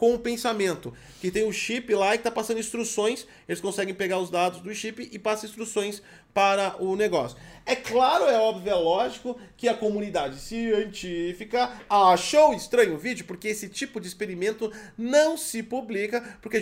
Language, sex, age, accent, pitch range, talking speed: Portuguese, male, 30-49, Brazilian, 180-230 Hz, 175 wpm